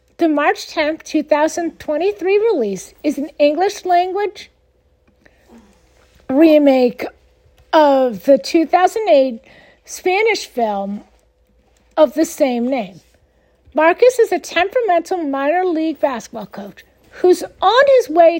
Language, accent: English, American